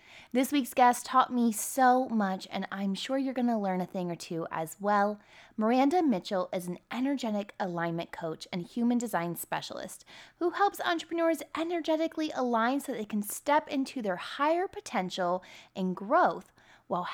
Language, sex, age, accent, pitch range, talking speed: English, female, 20-39, American, 195-270 Hz, 165 wpm